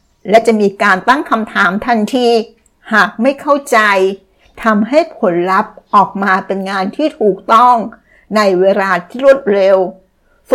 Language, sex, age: Thai, female, 60-79